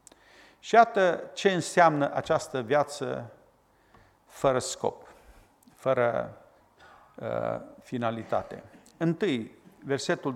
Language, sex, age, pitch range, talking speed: Romanian, male, 50-69, 125-165 Hz, 75 wpm